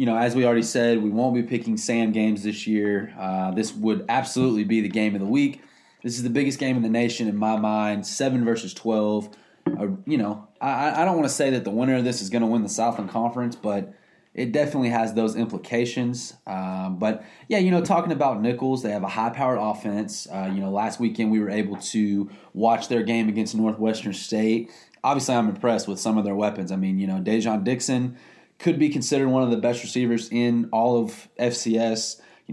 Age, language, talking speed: 20-39, English, 220 wpm